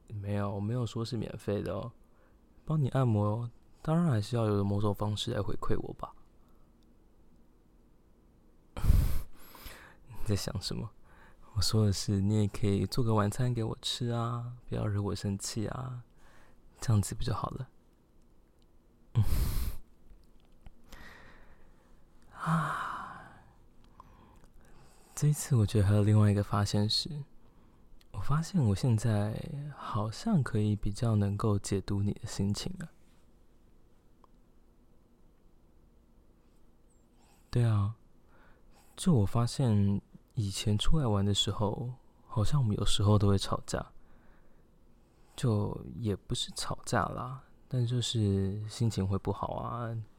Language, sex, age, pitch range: Chinese, male, 20-39, 100-120 Hz